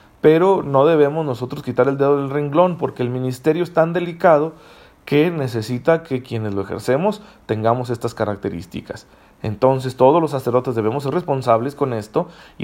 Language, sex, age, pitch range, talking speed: Spanish, male, 40-59, 120-155 Hz, 160 wpm